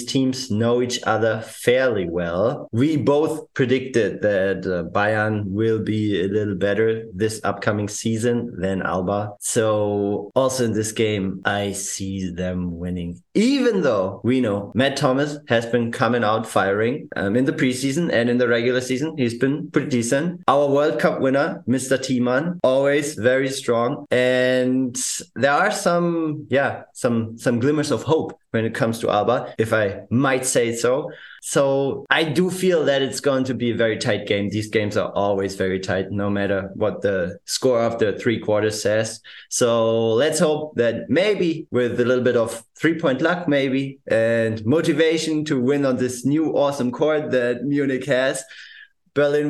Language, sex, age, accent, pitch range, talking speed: English, male, 30-49, German, 105-140 Hz, 170 wpm